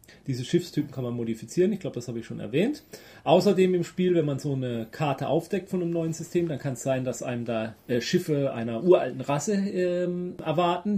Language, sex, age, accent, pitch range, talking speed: German, male, 30-49, German, 140-180 Hz, 200 wpm